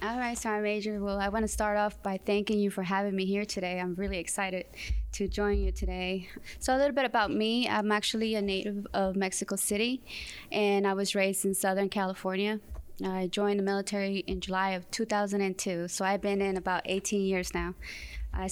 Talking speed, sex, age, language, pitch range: 200 wpm, female, 20-39, English, 190-205 Hz